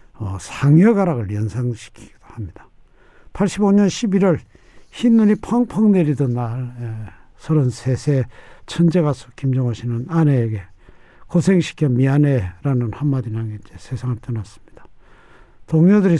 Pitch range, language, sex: 115-175 Hz, Korean, male